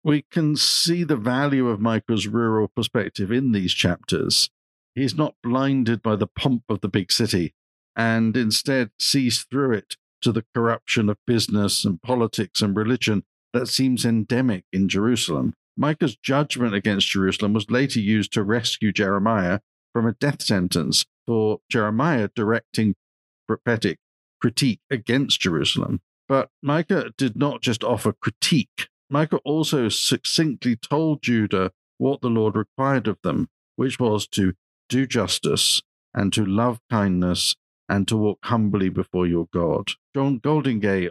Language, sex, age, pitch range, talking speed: English, male, 50-69, 100-130 Hz, 145 wpm